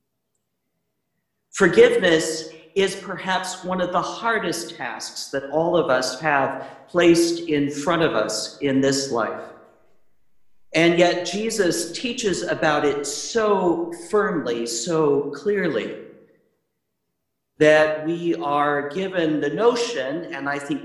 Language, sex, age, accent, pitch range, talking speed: English, male, 50-69, American, 145-190 Hz, 115 wpm